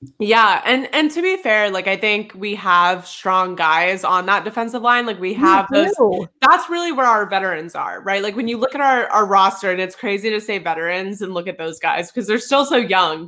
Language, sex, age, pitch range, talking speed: English, female, 20-39, 185-220 Hz, 235 wpm